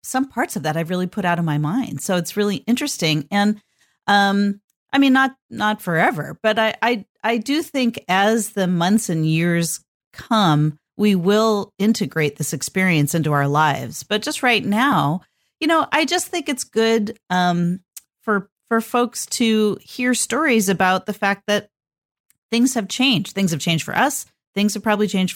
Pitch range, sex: 165-220 Hz, female